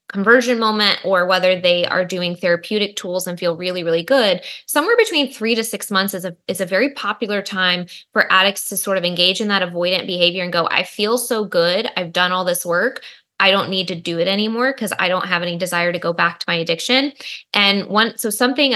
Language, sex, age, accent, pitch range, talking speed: English, female, 20-39, American, 175-205 Hz, 225 wpm